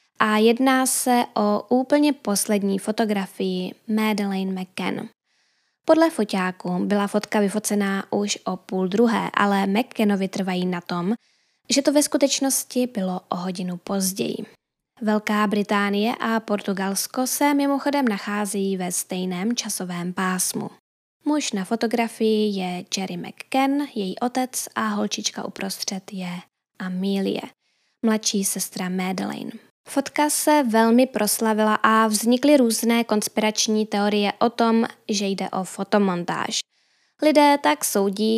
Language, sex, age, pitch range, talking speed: Czech, female, 10-29, 195-235 Hz, 120 wpm